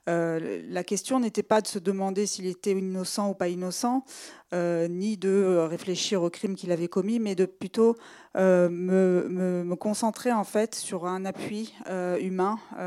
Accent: French